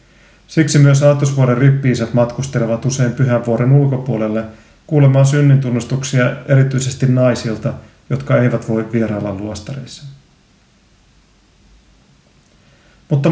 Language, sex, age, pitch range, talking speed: Finnish, male, 40-59, 115-140 Hz, 85 wpm